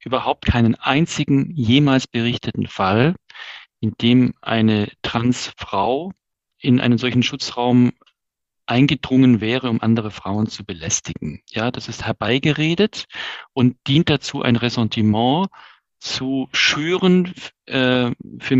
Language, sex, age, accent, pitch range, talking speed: German, male, 40-59, German, 115-140 Hz, 110 wpm